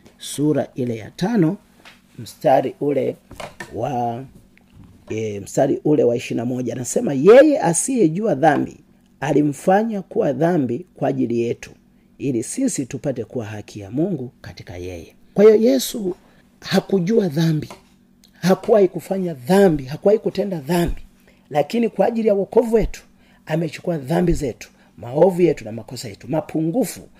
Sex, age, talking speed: male, 40-59, 120 wpm